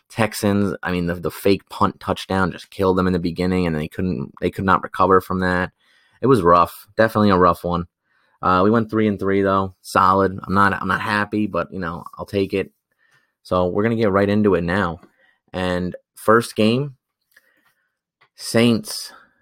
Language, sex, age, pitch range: English, male, 20-39, 90-100 Hz